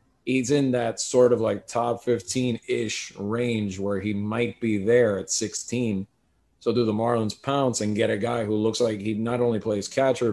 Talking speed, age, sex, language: 190 wpm, 30-49, male, English